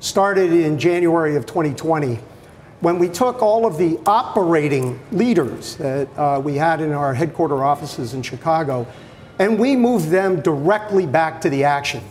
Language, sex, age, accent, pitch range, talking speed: English, male, 50-69, American, 150-190 Hz, 160 wpm